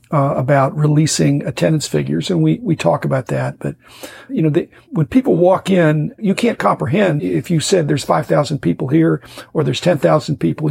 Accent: American